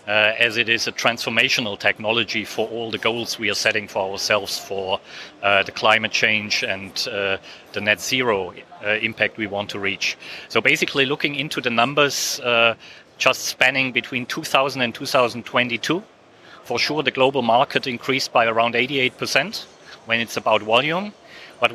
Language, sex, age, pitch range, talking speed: English, male, 30-49, 115-135 Hz, 165 wpm